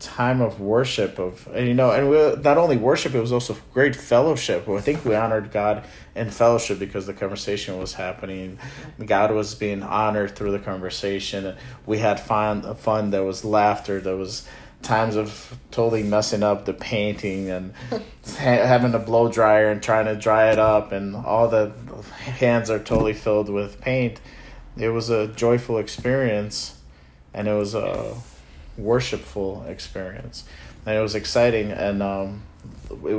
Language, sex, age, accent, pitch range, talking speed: English, male, 30-49, American, 100-115 Hz, 165 wpm